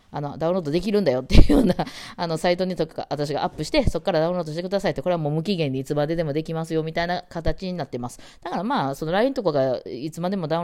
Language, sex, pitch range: Japanese, female, 130-175 Hz